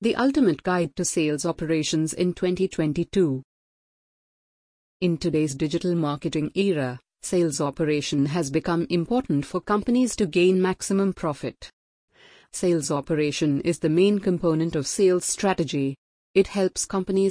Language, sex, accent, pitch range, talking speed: English, female, Indian, 150-190 Hz, 125 wpm